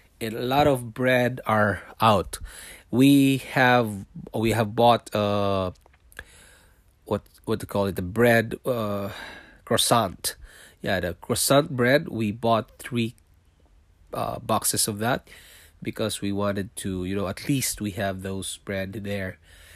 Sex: male